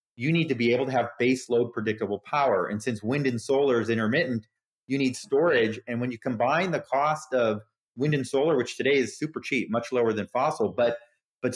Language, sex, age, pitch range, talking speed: English, male, 30-49, 110-135 Hz, 220 wpm